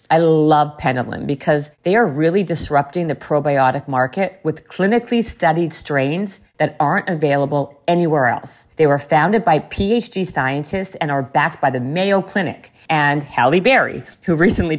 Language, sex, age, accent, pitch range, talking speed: English, female, 40-59, American, 150-195 Hz, 155 wpm